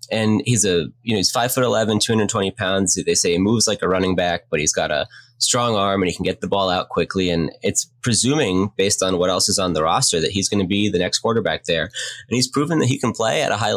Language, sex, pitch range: English, male, 90-120 Hz